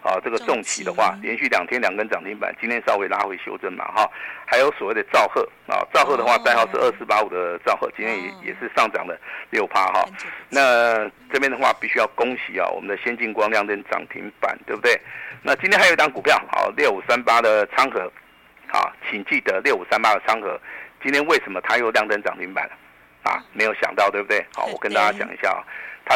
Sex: male